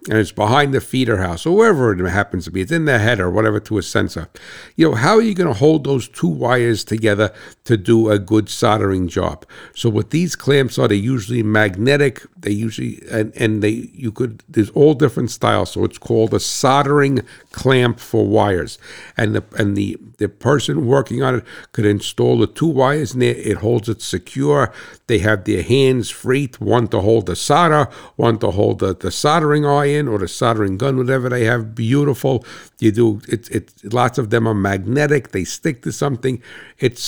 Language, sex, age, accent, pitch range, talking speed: English, male, 60-79, American, 105-140 Hz, 200 wpm